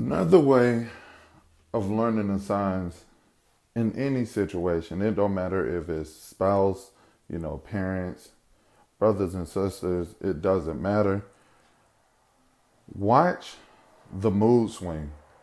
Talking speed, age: 110 wpm, 20-39